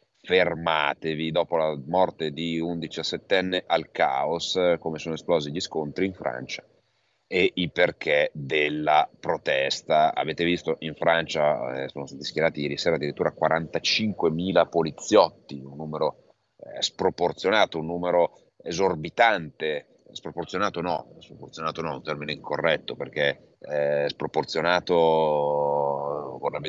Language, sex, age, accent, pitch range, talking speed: Italian, male, 30-49, native, 75-85 Hz, 115 wpm